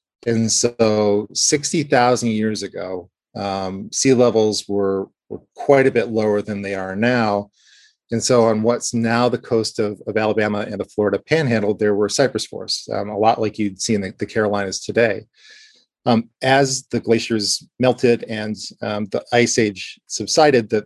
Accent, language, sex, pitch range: American, English, male, 105-120 Hz